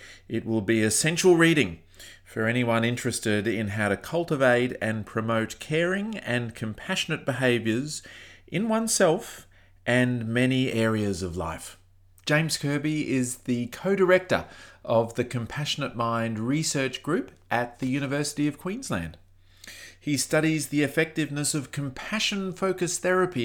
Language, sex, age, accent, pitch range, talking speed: English, male, 30-49, Australian, 105-150 Hz, 125 wpm